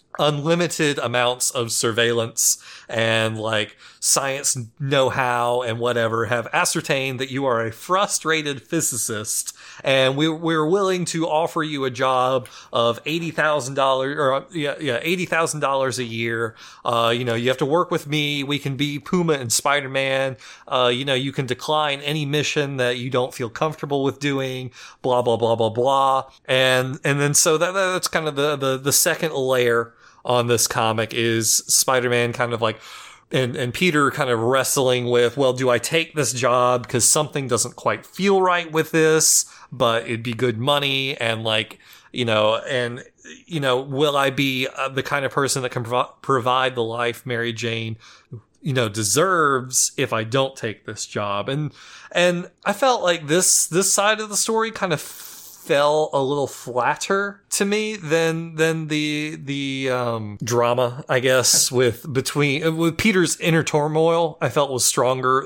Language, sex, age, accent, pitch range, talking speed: English, male, 30-49, American, 120-155 Hz, 175 wpm